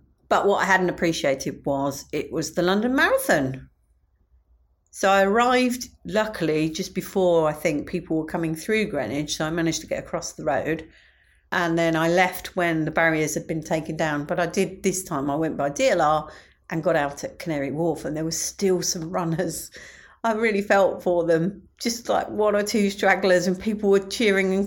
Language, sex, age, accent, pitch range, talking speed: English, female, 40-59, British, 150-200 Hz, 195 wpm